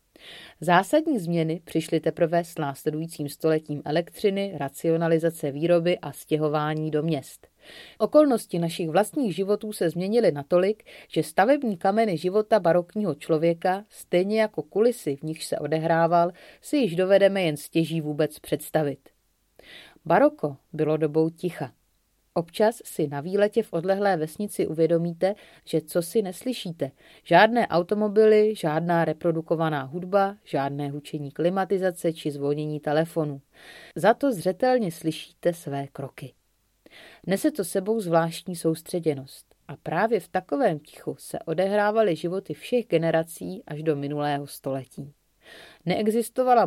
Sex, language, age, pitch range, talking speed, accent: female, Czech, 30-49, 155-195 Hz, 120 wpm, native